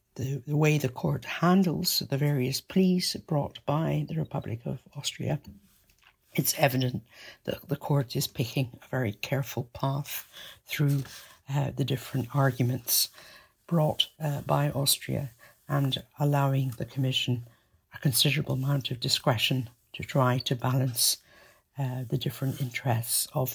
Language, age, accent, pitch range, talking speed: English, 60-79, British, 130-150 Hz, 135 wpm